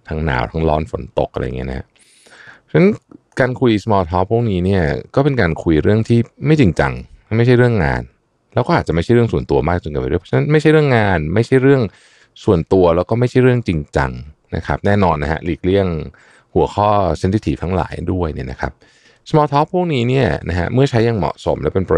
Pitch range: 75-115 Hz